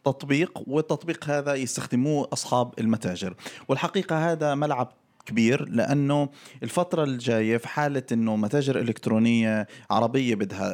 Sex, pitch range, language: male, 110-135 Hz, Arabic